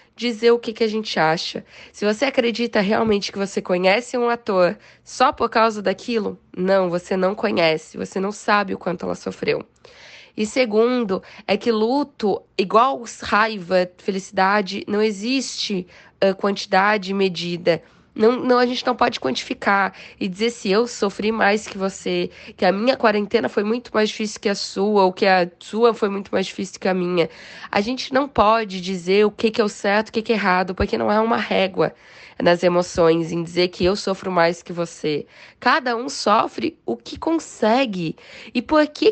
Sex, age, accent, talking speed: female, 10-29, Brazilian, 185 wpm